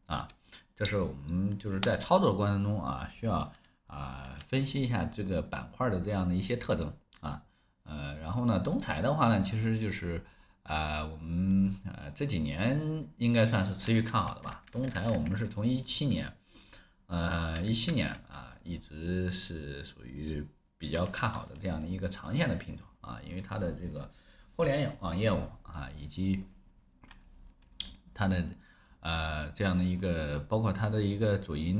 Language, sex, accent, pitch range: Chinese, male, native, 75-105 Hz